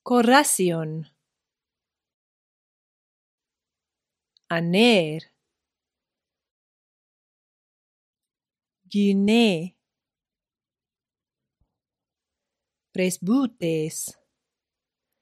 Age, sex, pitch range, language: 40-59, female, 160-220 Hz, Greek